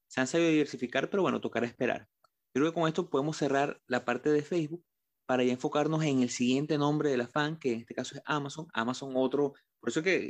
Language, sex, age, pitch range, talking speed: Spanish, male, 30-49, 125-150 Hz, 225 wpm